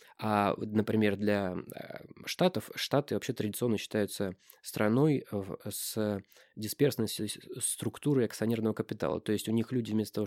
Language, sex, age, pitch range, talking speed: Russian, male, 20-39, 105-125 Hz, 125 wpm